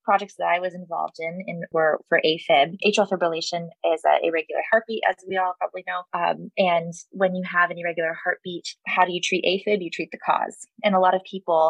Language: English